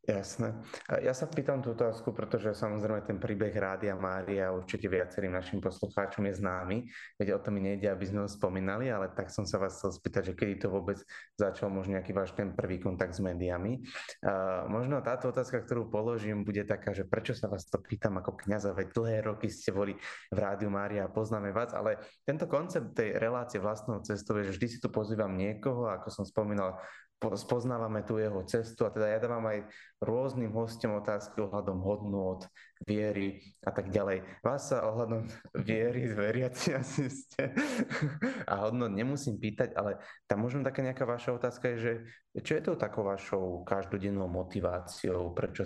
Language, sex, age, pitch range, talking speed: Slovak, male, 20-39, 95-115 Hz, 175 wpm